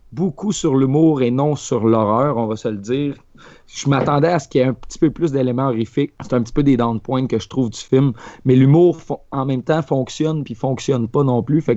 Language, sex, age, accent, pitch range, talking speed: French, male, 30-49, Canadian, 115-140 Hz, 250 wpm